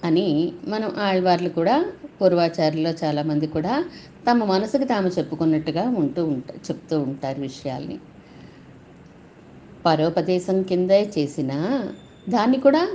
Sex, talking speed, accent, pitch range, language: female, 95 wpm, native, 150-190 Hz, Telugu